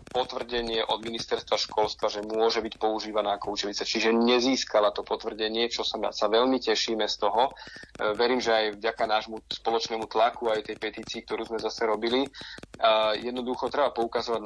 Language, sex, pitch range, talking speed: Slovak, male, 105-120 Hz, 160 wpm